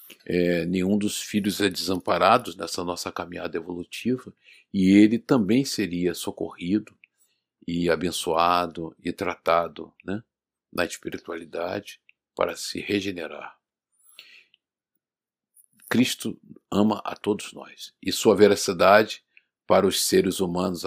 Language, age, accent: Portuguese, 50-69, Brazilian